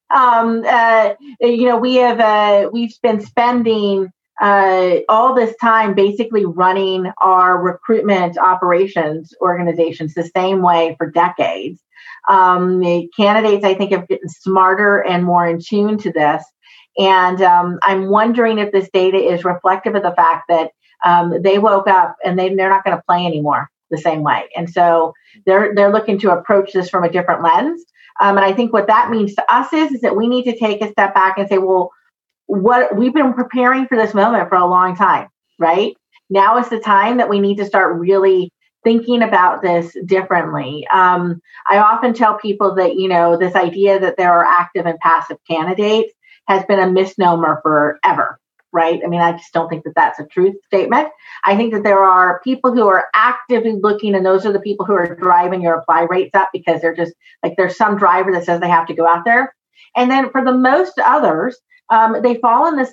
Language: English